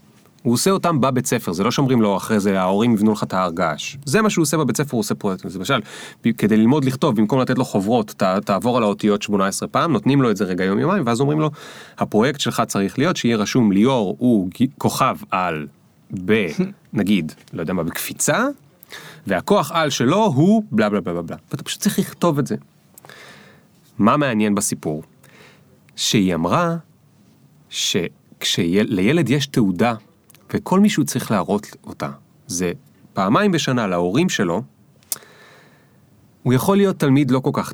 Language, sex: Hebrew, male